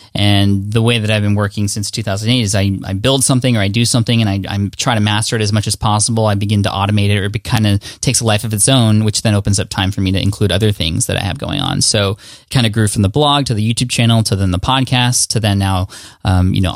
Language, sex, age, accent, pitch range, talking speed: English, male, 10-29, American, 105-120 Hz, 290 wpm